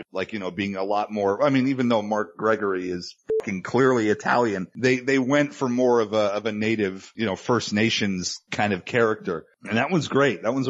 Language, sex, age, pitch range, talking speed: English, male, 30-49, 105-125 Hz, 225 wpm